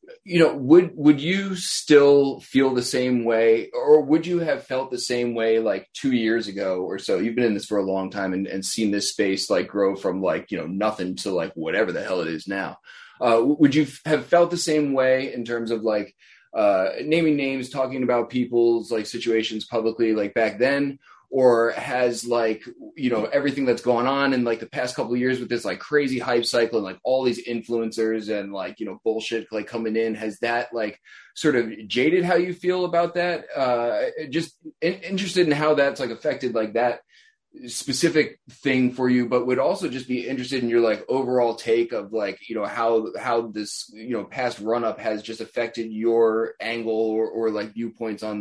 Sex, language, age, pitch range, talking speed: male, English, 20-39, 110-140 Hz, 210 wpm